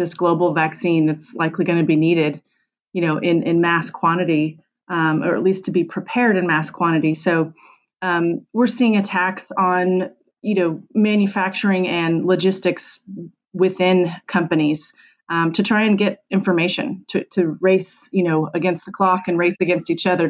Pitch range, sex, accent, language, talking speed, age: 170-190 Hz, female, American, English, 170 wpm, 30-49